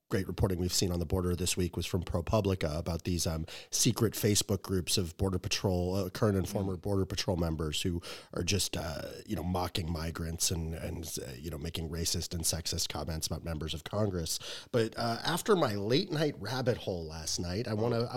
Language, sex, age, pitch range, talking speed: English, male, 30-49, 95-135 Hz, 210 wpm